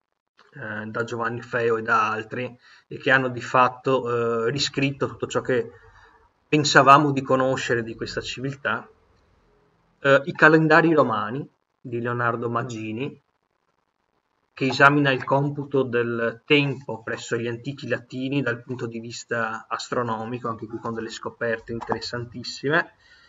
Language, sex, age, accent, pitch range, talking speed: Italian, male, 30-49, native, 115-140 Hz, 130 wpm